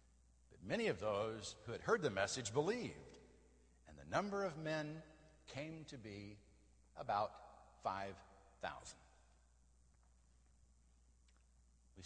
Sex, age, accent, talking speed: male, 60-79, American, 100 wpm